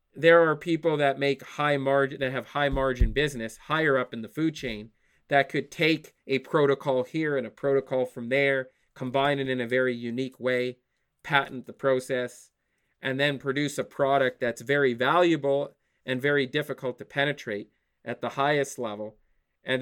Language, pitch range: English, 125-145 Hz